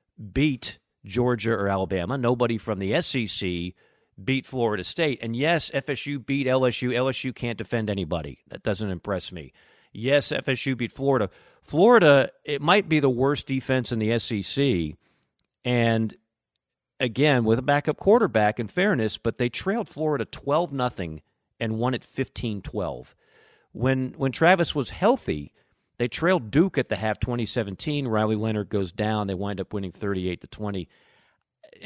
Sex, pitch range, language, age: male, 105-135 Hz, English, 40-59